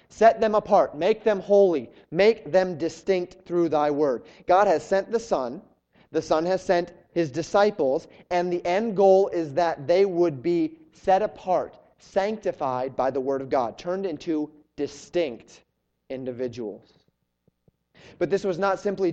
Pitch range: 140-180 Hz